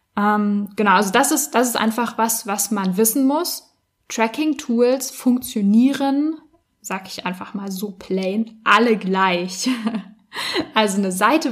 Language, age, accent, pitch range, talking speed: German, 10-29, German, 205-255 Hz, 130 wpm